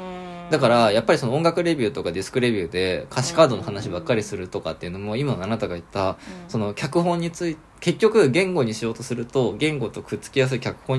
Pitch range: 110-160 Hz